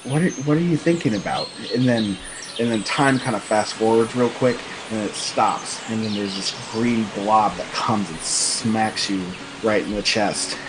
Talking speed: 200 wpm